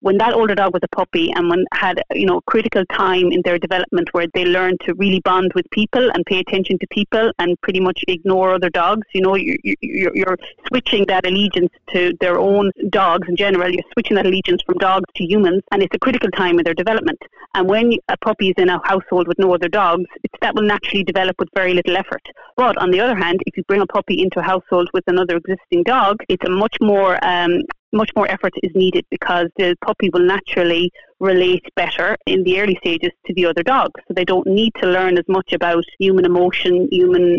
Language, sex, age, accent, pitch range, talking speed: English, female, 30-49, Irish, 180-210 Hz, 225 wpm